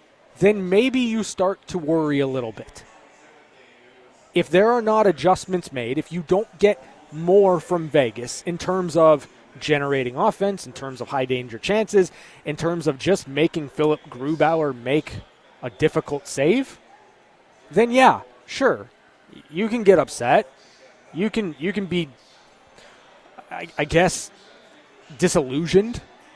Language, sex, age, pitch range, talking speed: English, male, 20-39, 140-195 Hz, 135 wpm